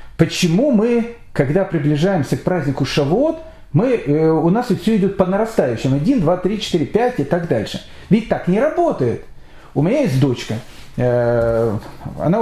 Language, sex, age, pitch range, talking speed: Russian, male, 40-59, 140-205 Hz, 160 wpm